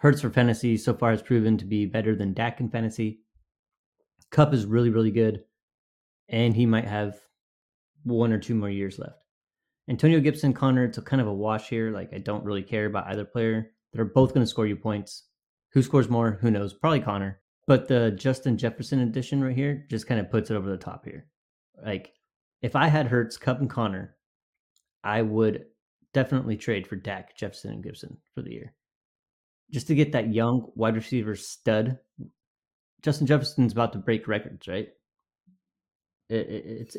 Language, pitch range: English, 105-125 Hz